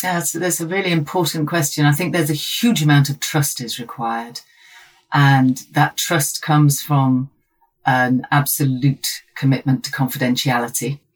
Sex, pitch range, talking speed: female, 125-145 Hz, 145 wpm